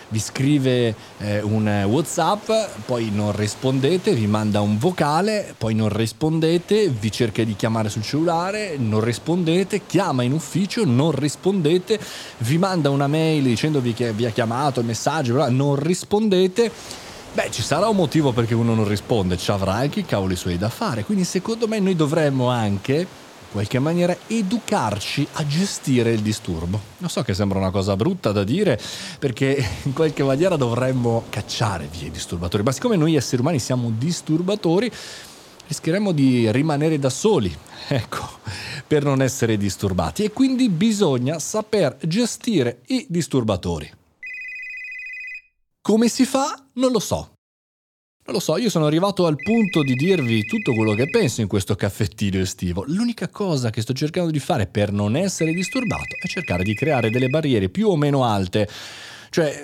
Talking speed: 160 wpm